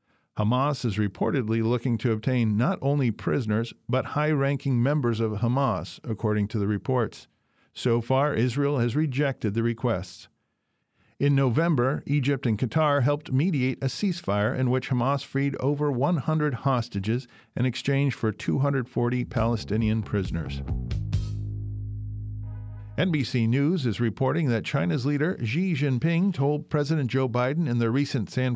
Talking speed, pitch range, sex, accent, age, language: 135 wpm, 115-140 Hz, male, American, 50-69, English